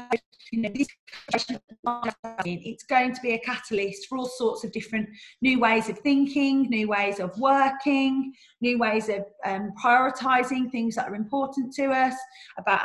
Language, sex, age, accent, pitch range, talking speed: English, female, 30-49, British, 220-255 Hz, 145 wpm